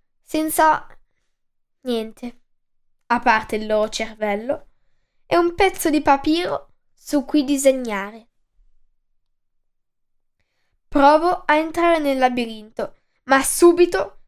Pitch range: 230-310 Hz